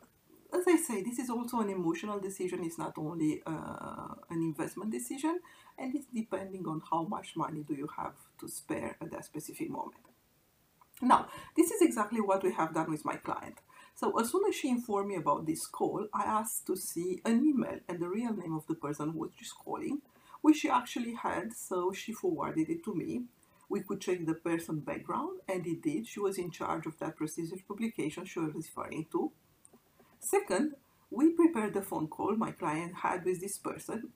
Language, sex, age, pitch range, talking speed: English, female, 50-69, 165-250 Hz, 195 wpm